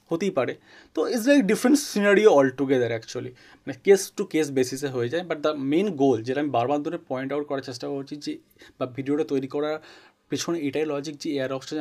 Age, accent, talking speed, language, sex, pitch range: 30-49, native, 210 wpm, Bengali, male, 130-160 Hz